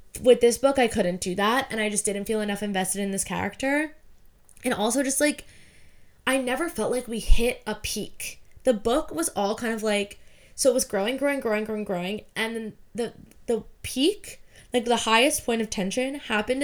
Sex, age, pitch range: female, 10-29, 205-265 Hz